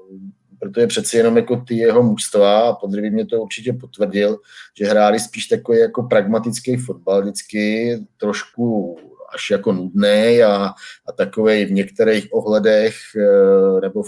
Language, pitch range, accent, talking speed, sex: Czech, 105-125 Hz, native, 140 wpm, male